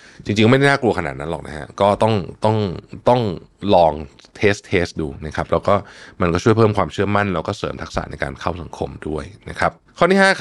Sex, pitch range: male, 85-120 Hz